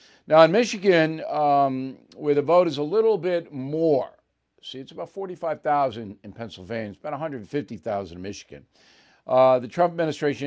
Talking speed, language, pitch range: 155 wpm, English, 120-155 Hz